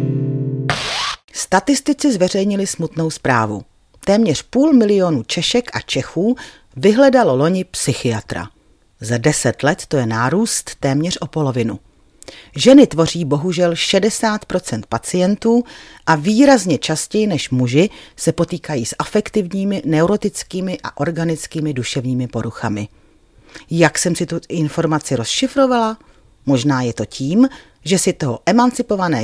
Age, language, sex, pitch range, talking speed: 40-59, Czech, female, 130-195 Hz, 115 wpm